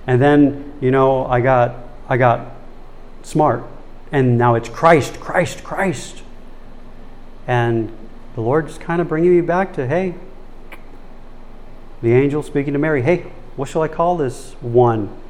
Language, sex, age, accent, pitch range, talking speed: English, male, 40-59, American, 115-145 Hz, 145 wpm